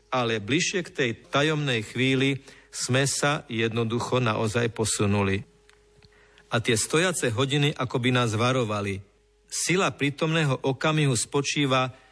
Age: 50-69